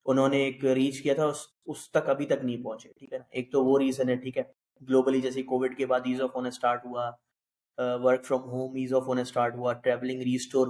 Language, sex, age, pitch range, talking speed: Urdu, male, 20-39, 125-135 Hz, 235 wpm